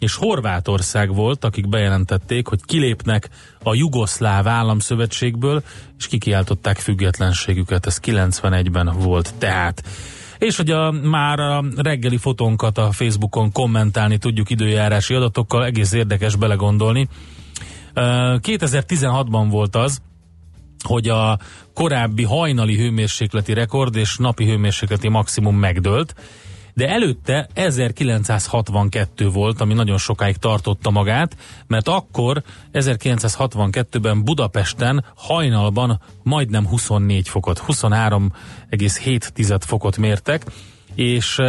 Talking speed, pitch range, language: 95 wpm, 100-125 Hz, Hungarian